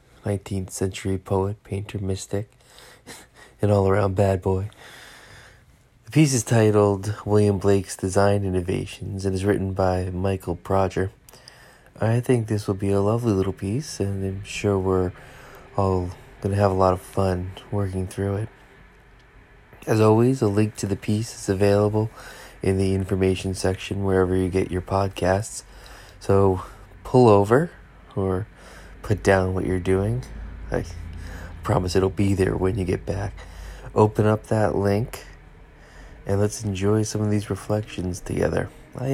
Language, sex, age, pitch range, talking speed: English, male, 20-39, 95-110 Hz, 145 wpm